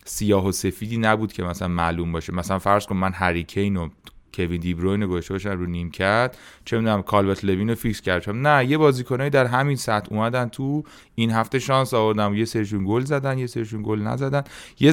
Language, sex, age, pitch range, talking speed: Persian, male, 30-49, 85-110 Hz, 200 wpm